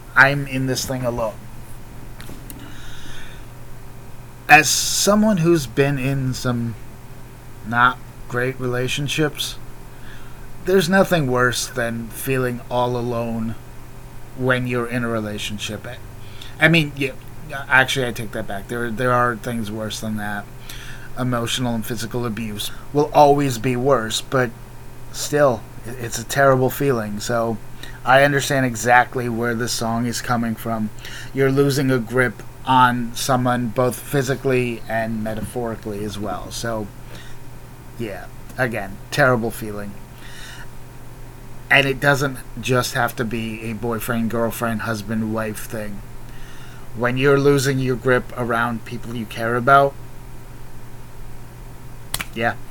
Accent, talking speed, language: American, 120 wpm, English